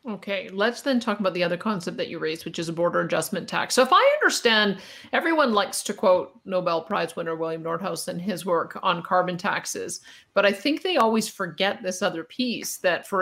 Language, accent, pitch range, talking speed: English, American, 180-225 Hz, 215 wpm